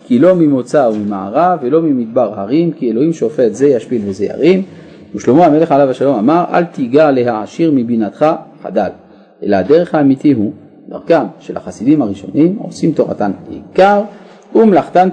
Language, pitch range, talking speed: Hebrew, 140-215 Hz, 145 wpm